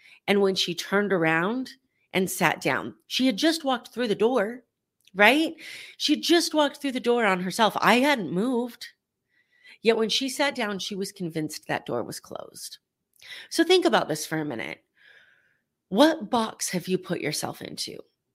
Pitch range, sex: 195-275 Hz, female